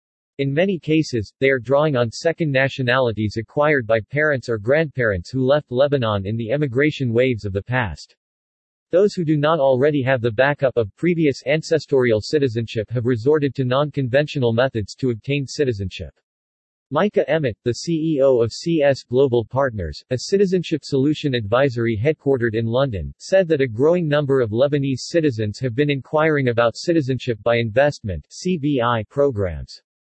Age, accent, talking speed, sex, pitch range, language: 40-59, American, 150 wpm, male, 115-150 Hz, English